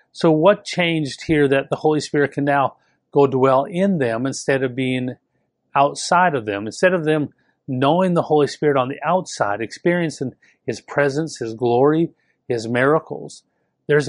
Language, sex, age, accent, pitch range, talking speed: English, male, 40-59, American, 130-160 Hz, 160 wpm